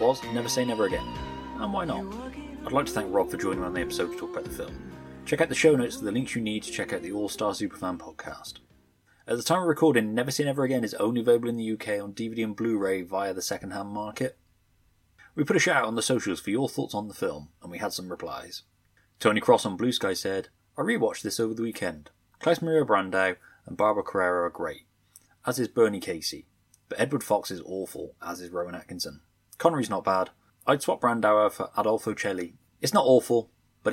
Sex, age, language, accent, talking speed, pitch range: male, 20-39, English, British, 225 wpm, 95-120 Hz